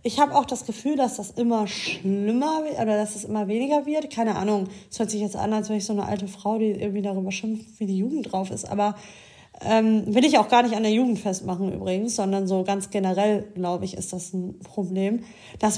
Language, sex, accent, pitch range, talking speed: German, female, German, 210-255 Hz, 230 wpm